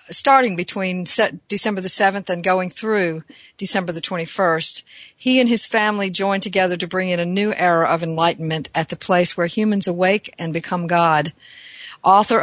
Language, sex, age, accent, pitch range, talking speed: English, female, 50-69, American, 170-205 Hz, 170 wpm